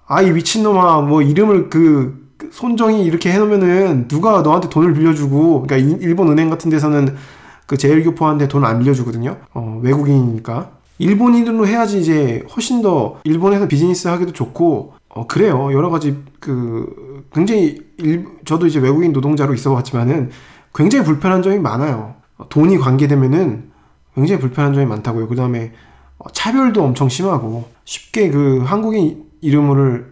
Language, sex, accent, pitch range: Korean, male, native, 130-175 Hz